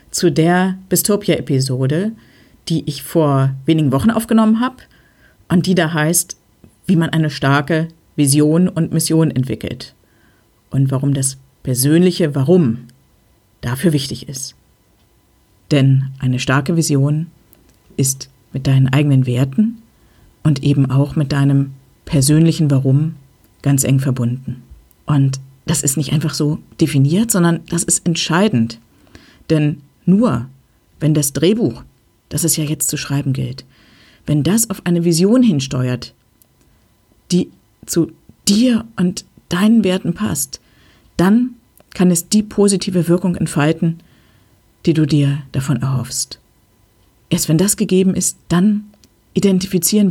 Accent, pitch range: German, 135-175 Hz